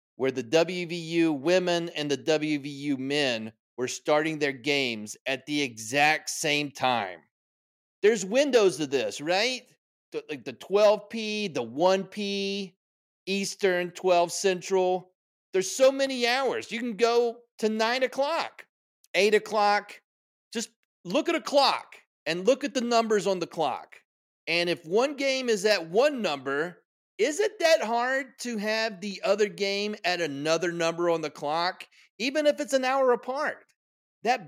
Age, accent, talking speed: 40-59, American, 150 wpm